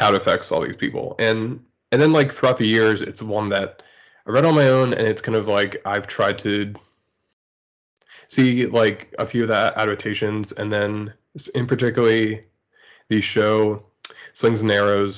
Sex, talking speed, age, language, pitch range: male, 180 wpm, 20-39, English, 100-120 Hz